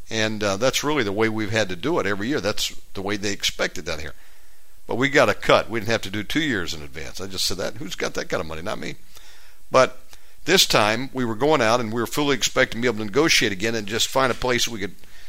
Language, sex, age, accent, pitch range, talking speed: English, male, 50-69, American, 105-140 Hz, 280 wpm